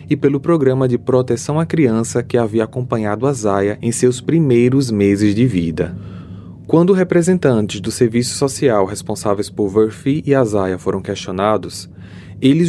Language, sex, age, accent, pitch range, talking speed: Portuguese, male, 20-39, Brazilian, 105-145 Hz, 150 wpm